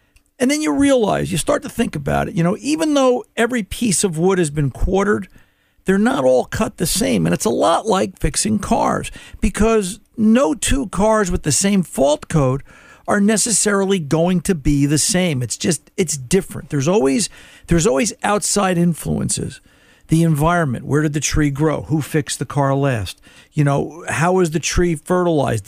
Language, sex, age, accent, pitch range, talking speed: English, male, 50-69, American, 155-200 Hz, 185 wpm